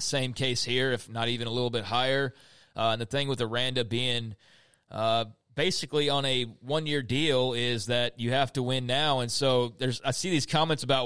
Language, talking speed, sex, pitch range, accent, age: English, 205 wpm, male, 120-150 Hz, American, 30-49